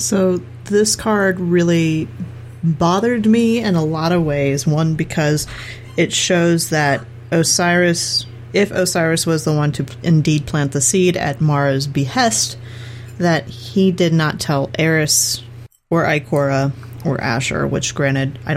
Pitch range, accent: 120-165 Hz, American